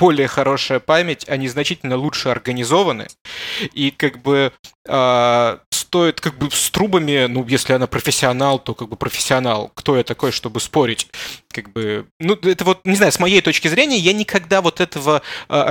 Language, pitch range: Russian, 135-175 Hz